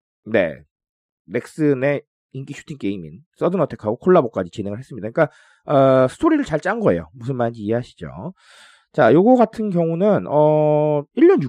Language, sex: Korean, male